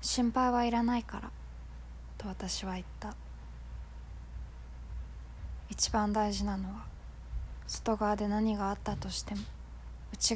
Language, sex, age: Japanese, female, 20-39